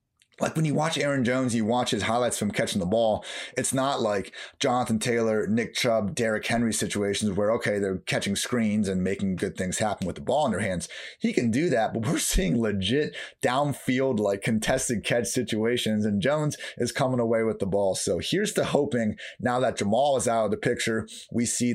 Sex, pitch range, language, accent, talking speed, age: male, 105-130 Hz, English, American, 205 wpm, 30-49